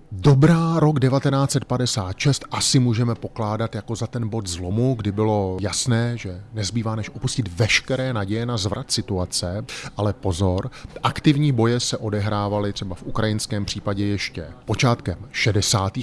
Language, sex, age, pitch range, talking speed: Czech, male, 30-49, 105-125 Hz, 135 wpm